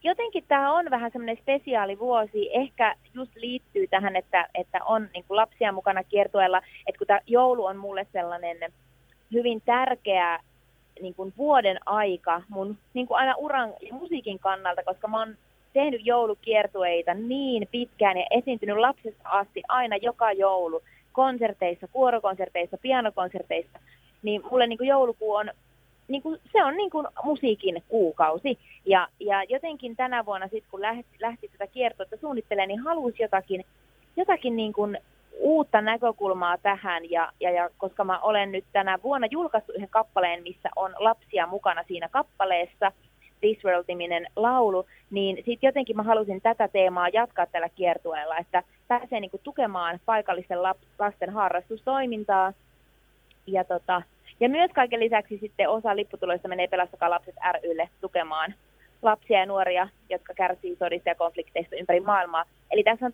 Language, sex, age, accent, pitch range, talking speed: Finnish, female, 30-49, native, 180-235 Hz, 140 wpm